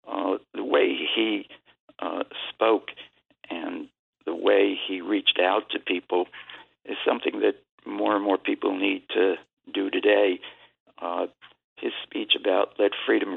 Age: 60-79